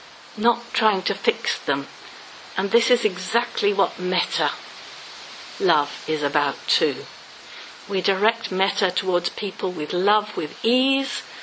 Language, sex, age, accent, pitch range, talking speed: English, female, 50-69, British, 185-290 Hz, 125 wpm